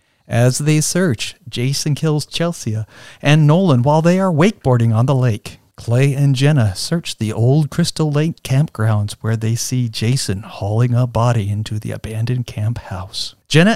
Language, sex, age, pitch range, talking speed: English, male, 50-69, 120-165 Hz, 160 wpm